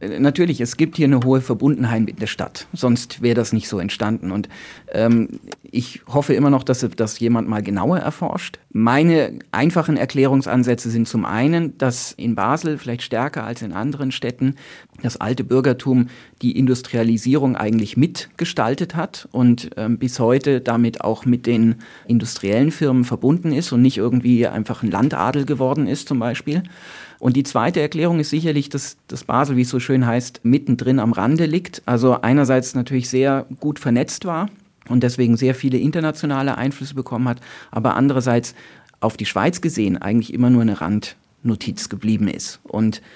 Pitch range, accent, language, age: 115-140 Hz, German, German, 40-59